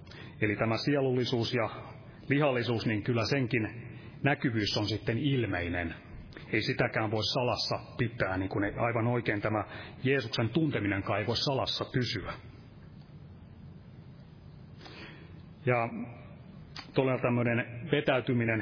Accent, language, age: native, Finnish, 30-49